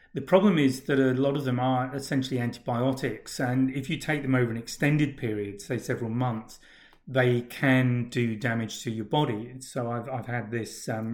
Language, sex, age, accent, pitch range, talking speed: English, male, 30-49, British, 115-135 Hz, 200 wpm